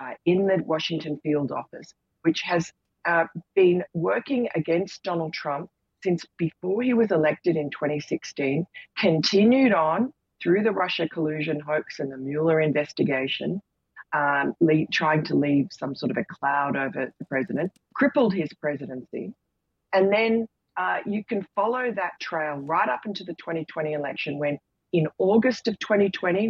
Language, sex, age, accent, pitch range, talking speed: English, female, 40-59, Australian, 150-195 Hz, 150 wpm